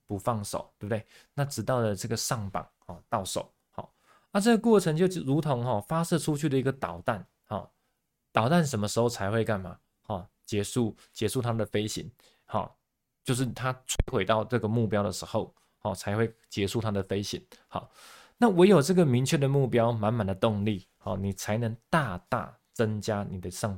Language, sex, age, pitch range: Chinese, male, 20-39, 105-135 Hz